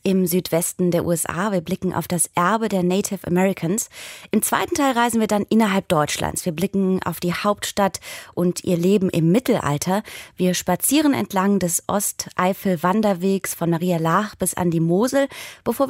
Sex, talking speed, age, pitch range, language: female, 160 wpm, 20-39, 170-210 Hz, German